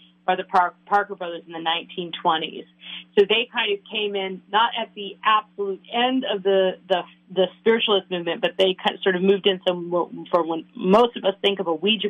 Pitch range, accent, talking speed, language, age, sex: 170-200 Hz, American, 210 wpm, English, 40-59, female